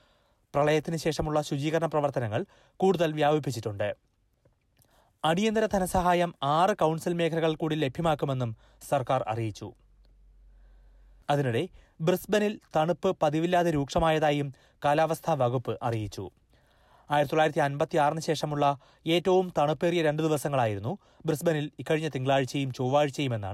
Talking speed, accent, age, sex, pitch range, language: 85 wpm, native, 30-49, male, 130-165 Hz, Malayalam